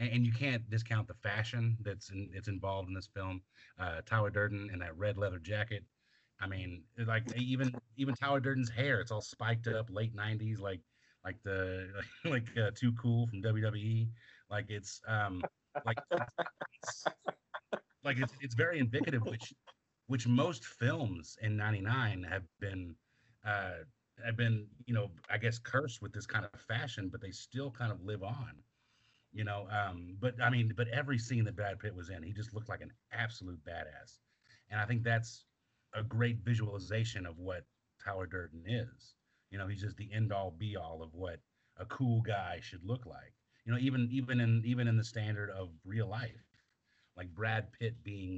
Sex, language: male, English